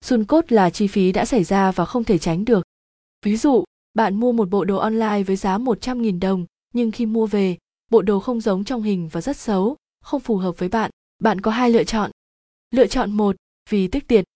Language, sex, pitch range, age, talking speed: Vietnamese, female, 190-235 Hz, 20-39, 225 wpm